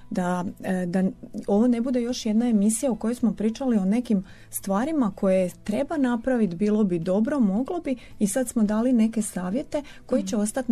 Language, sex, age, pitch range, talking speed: Croatian, female, 30-49, 185-235 Hz, 180 wpm